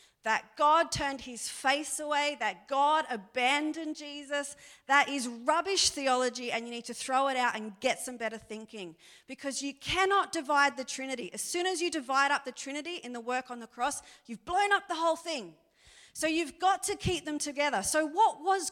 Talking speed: 200 wpm